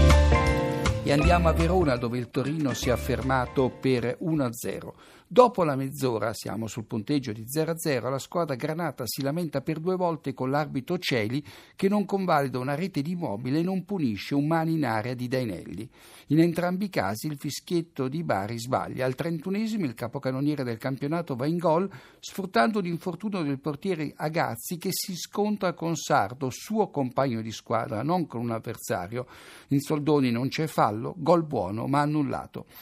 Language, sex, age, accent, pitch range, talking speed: Italian, male, 60-79, native, 125-170 Hz, 170 wpm